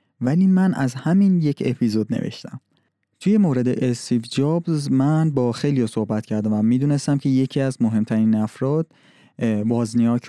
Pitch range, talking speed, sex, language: 115-150 Hz, 140 wpm, male, Persian